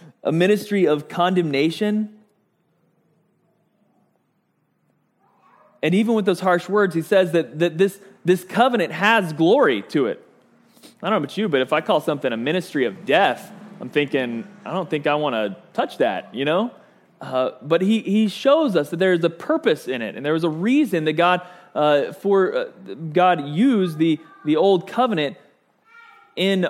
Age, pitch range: 20-39, 145-195 Hz